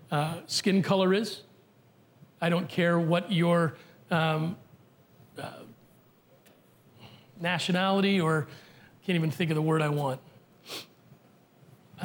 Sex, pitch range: male, 160-195 Hz